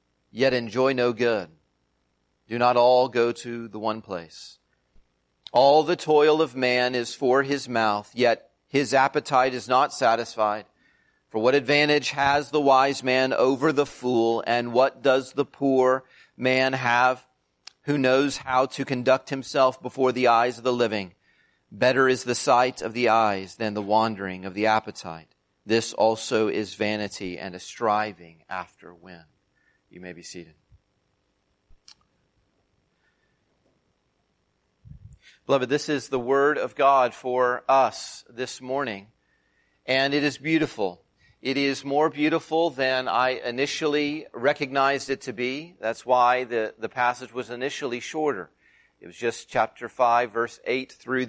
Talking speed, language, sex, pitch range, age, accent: 145 wpm, English, male, 115-140 Hz, 40-59, American